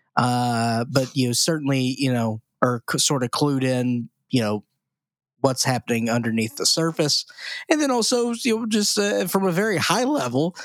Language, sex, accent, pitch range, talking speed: English, male, American, 125-150 Hz, 180 wpm